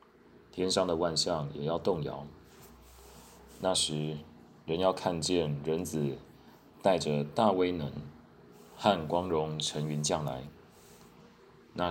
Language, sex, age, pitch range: Chinese, male, 30-49, 70-85 Hz